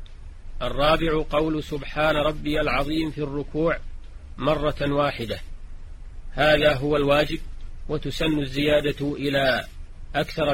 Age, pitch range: 40-59, 130-150 Hz